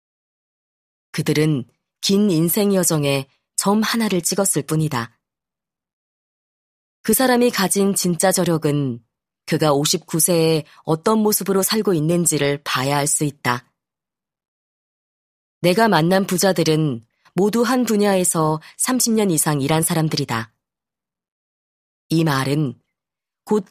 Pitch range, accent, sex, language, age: 140-185 Hz, native, female, Korean, 30-49